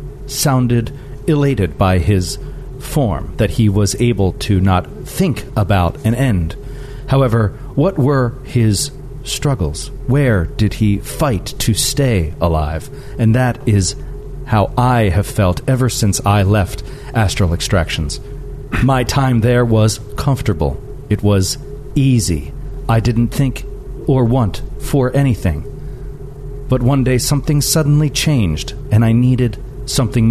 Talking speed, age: 130 wpm, 40-59